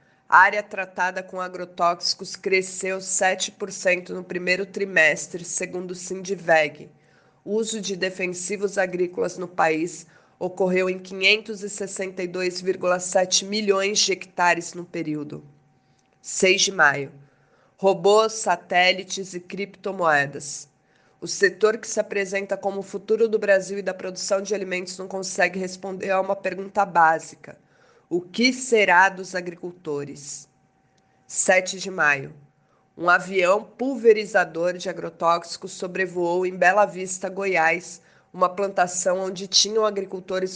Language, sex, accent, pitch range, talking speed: Portuguese, female, Brazilian, 175-195 Hz, 115 wpm